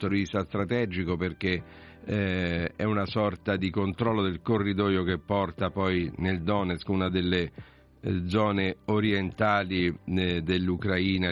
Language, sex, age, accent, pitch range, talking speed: Italian, male, 50-69, native, 90-105 Hz, 115 wpm